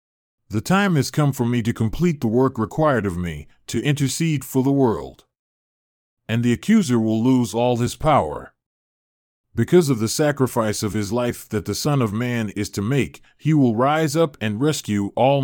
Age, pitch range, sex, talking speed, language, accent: 40-59, 110-145 Hz, male, 185 wpm, English, American